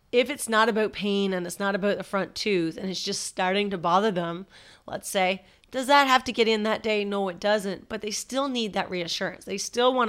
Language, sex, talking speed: English, female, 245 wpm